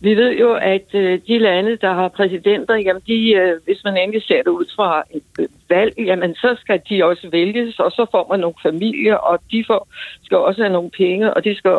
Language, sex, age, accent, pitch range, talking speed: Danish, female, 60-79, native, 190-230 Hz, 220 wpm